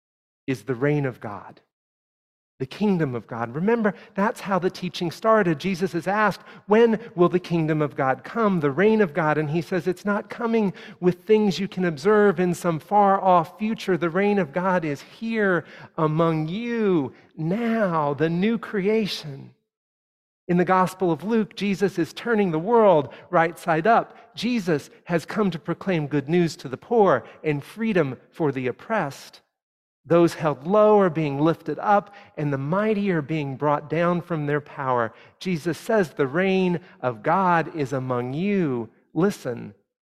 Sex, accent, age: male, American, 40-59